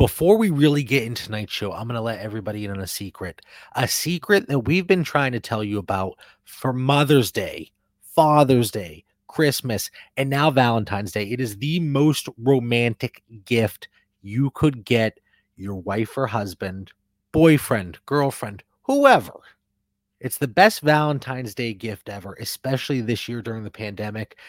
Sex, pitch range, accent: male, 105-140 Hz, American